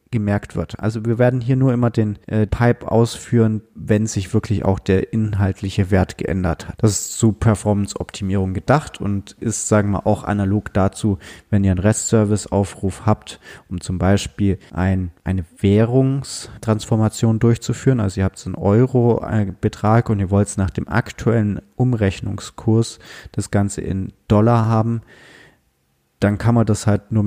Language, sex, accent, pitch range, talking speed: German, male, German, 95-115 Hz, 150 wpm